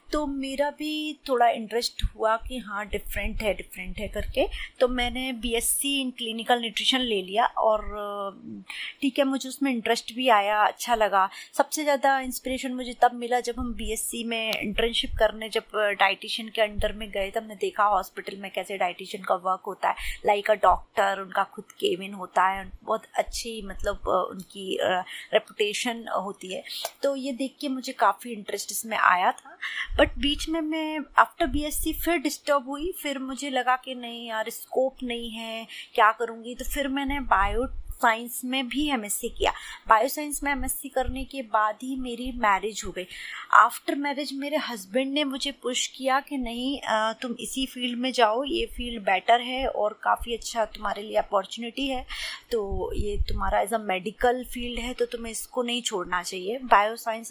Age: 20-39